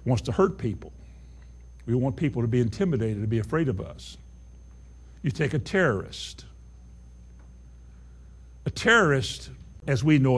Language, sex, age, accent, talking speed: English, male, 60-79, American, 140 wpm